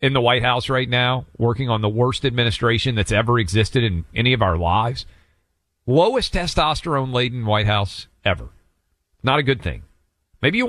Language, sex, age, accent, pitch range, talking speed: English, male, 40-59, American, 105-150 Hz, 170 wpm